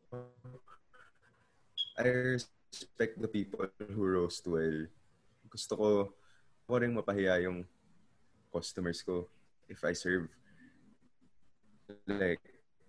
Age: 20-39